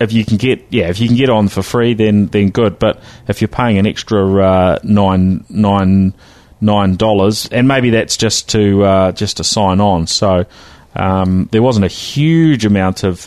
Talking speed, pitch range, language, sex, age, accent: 200 wpm, 95-120 Hz, English, male, 30-49, Australian